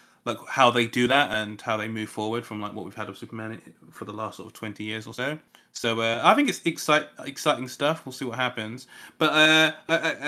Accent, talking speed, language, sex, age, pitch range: British, 235 wpm, English, male, 30-49, 110-140 Hz